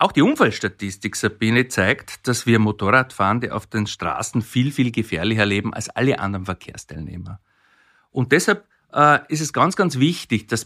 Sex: male